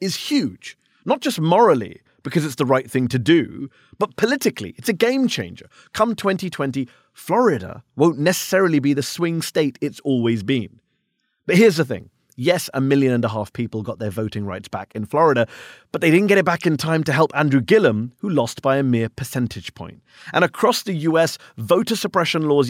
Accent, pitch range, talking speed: British, 130-190 Hz, 195 wpm